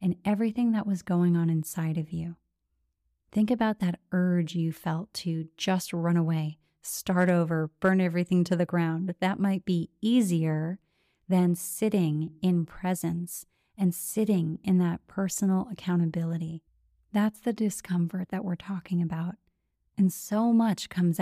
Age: 30-49